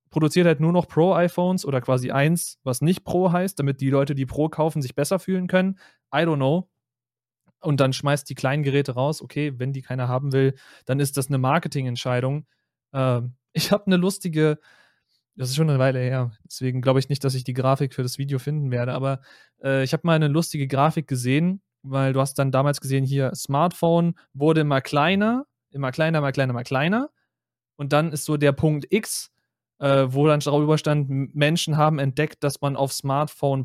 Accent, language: German, German